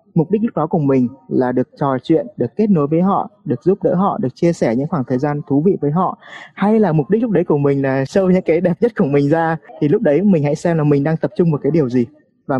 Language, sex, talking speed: Vietnamese, male, 300 wpm